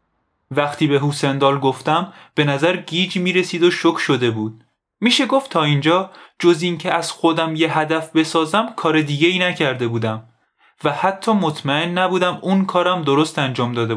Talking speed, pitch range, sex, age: 160 wpm, 120-190 Hz, male, 20-39